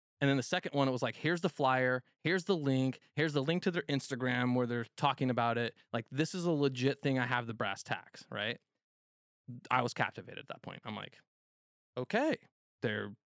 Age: 20-39